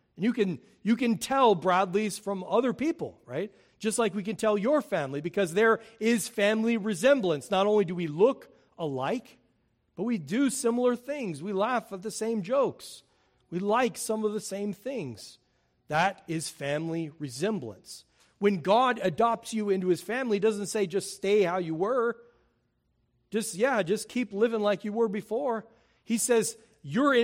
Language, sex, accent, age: English, male, American, 40-59